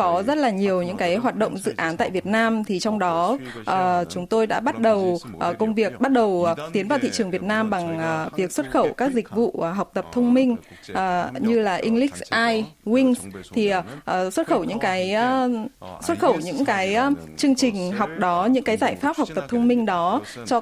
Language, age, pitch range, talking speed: Vietnamese, 20-39, 185-245 Hz, 240 wpm